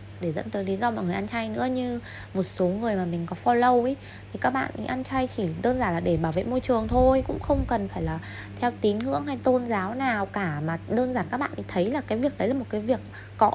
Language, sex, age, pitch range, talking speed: Vietnamese, female, 20-39, 165-250 Hz, 275 wpm